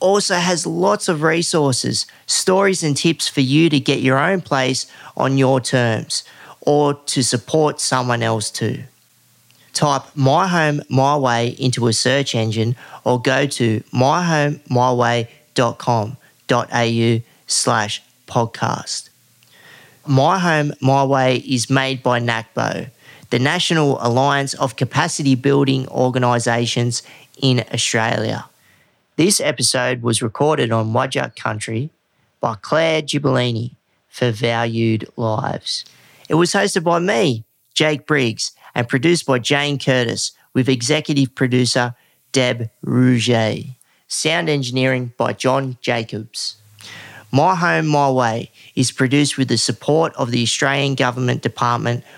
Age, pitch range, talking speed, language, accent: 30-49, 120-145 Hz, 120 wpm, English, Australian